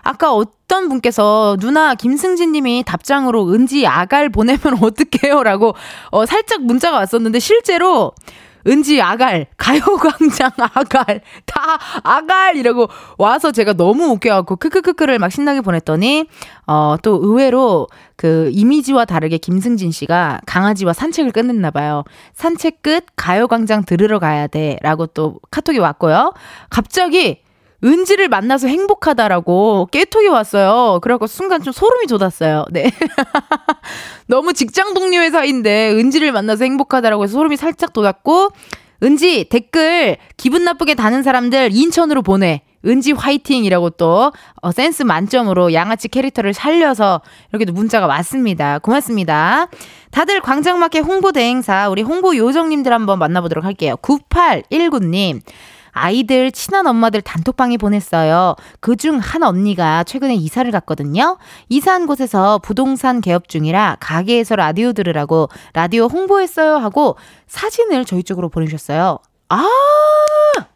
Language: Korean